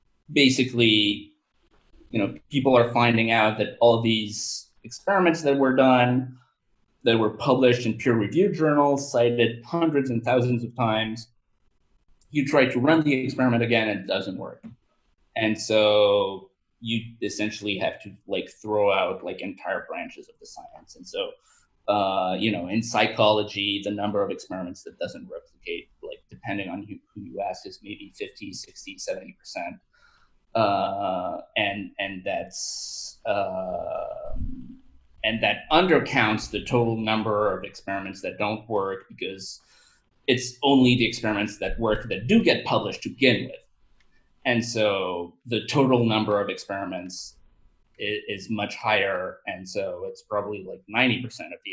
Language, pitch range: English, 110-165 Hz